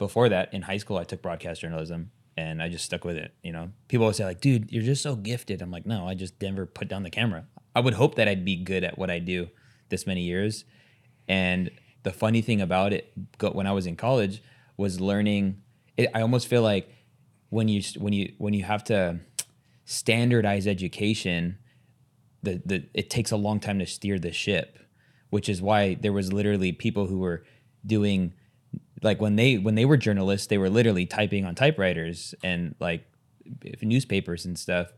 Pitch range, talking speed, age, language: 95-115 Hz, 200 wpm, 20-39, English